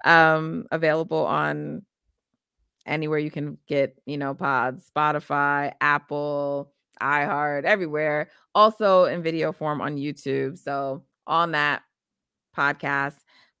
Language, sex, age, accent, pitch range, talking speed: English, female, 30-49, American, 140-160 Hz, 105 wpm